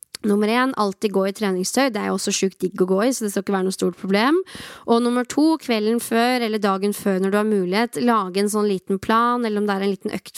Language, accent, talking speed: English, Swedish, 270 wpm